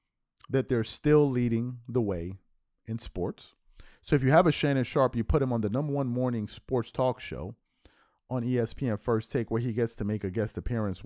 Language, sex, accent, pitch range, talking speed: English, male, American, 115-150 Hz, 205 wpm